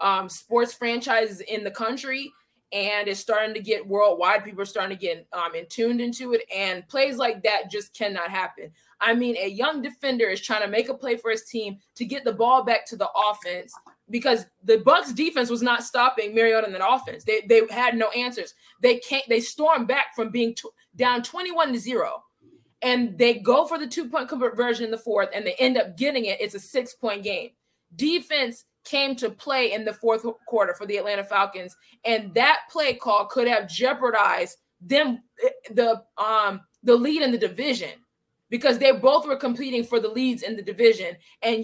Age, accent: 20-39, American